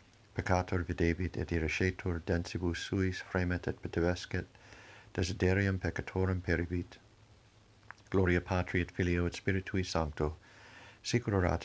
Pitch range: 90-100 Hz